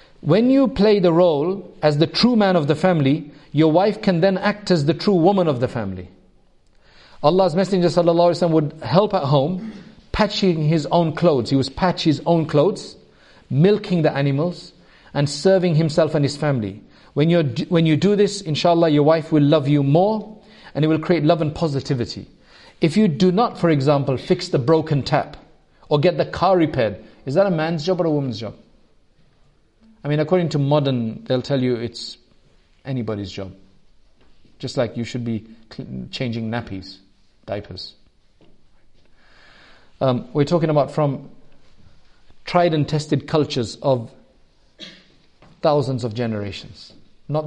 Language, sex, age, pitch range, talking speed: English, male, 50-69, 120-170 Hz, 160 wpm